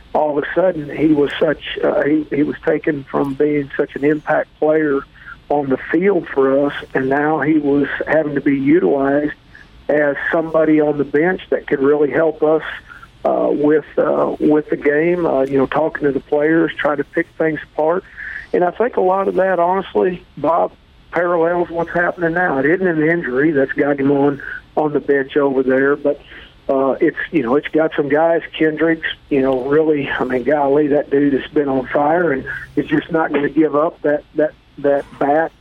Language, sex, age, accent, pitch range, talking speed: English, male, 50-69, American, 145-160 Hz, 200 wpm